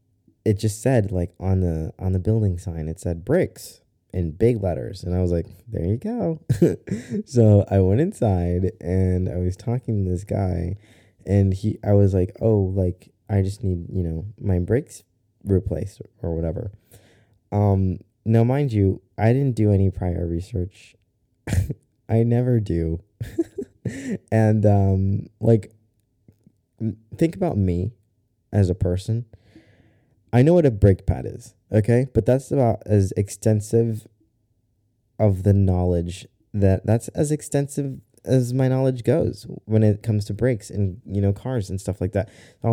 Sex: male